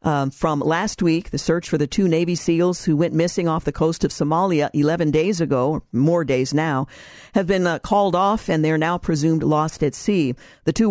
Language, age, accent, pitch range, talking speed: English, 50-69, American, 155-185 Hz, 215 wpm